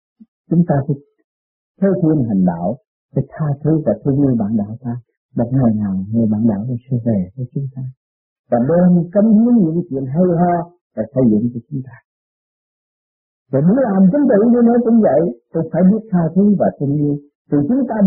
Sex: male